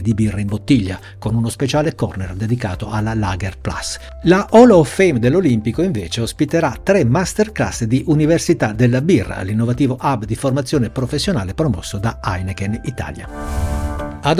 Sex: male